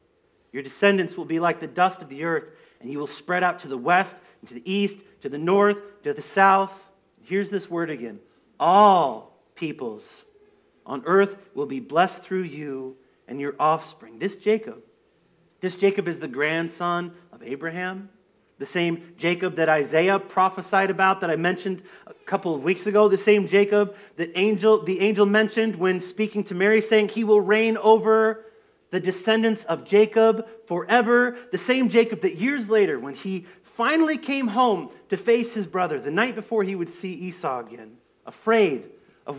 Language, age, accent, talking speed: English, 40-59, American, 175 wpm